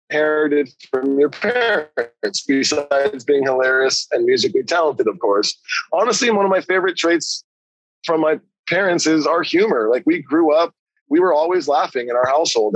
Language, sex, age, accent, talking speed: English, male, 30-49, American, 165 wpm